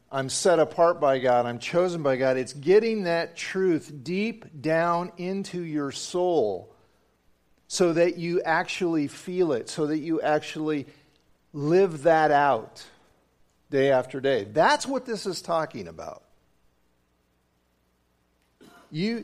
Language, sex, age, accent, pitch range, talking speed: English, male, 50-69, American, 125-185 Hz, 130 wpm